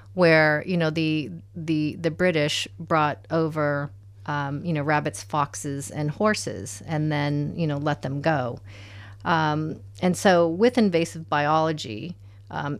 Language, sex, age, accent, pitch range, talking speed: English, female, 40-59, American, 100-165 Hz, 140 wpm